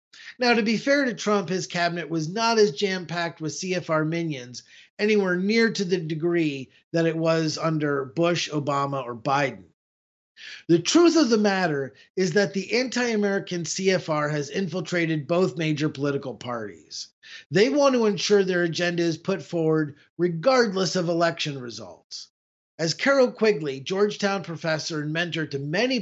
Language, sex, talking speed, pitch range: English, male, 150 wpm, 155-205 Hz